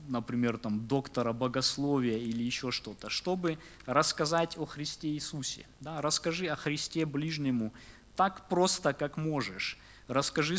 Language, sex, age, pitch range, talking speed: German, male, 20-39, 125-150 Hz, 115 wpm